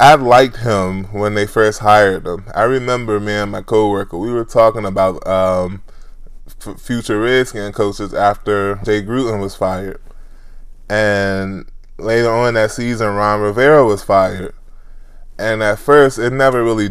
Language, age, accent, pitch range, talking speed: English, 20-39, American, 95-110 Hz, 150 wpm